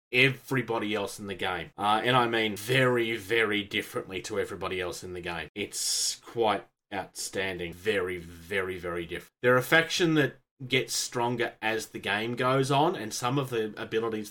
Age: 30-49